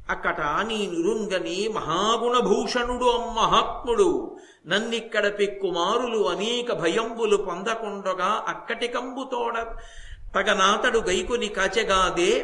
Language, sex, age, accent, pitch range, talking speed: Telugu, male, 50-69, native, 195-245 Hz, 75 wpm